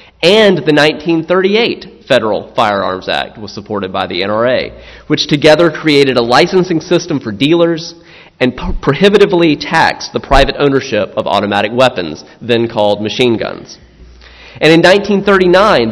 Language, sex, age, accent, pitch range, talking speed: English, male, 30-49, American, 115-165 Hz, 130 wpm